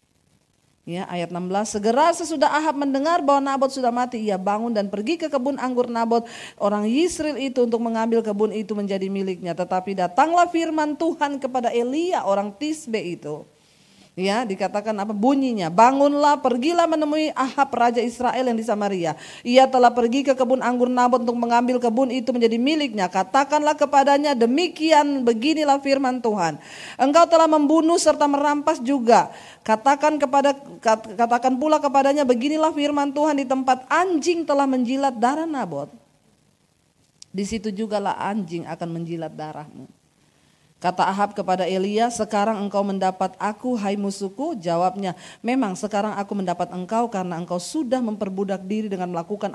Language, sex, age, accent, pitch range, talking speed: Indonesian, female, 40-59, native, 200-275 Hz, 145 wpm